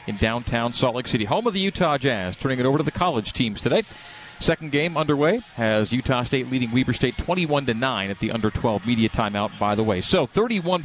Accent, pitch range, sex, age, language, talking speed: American, 120-155 Hz, male, 40-59, English, 210 wpm